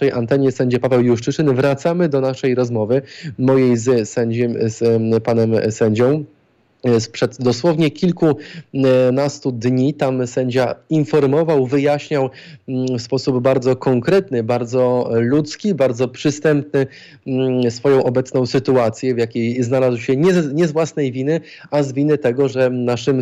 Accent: native